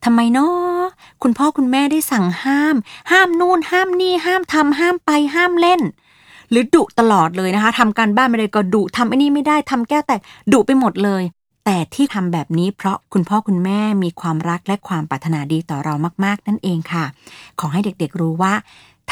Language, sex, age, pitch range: Thai, female, 30-49, 180-255 Hz